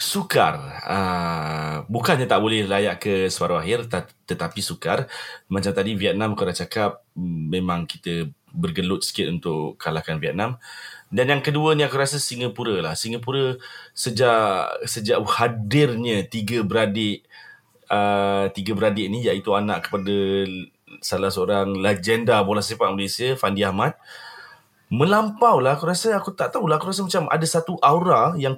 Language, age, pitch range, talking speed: Malay, 30-49, 100-145 Hz, 140 wpm